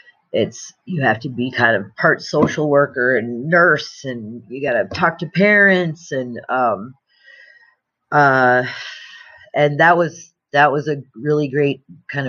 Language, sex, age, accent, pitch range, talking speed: English, female, 30-49, American, 140-180 Hz, 150 wpm